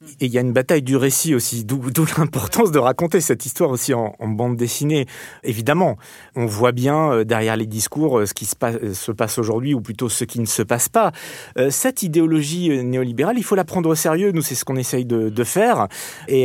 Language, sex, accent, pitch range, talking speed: French, male, French, 120-150 Hz, 225 wpm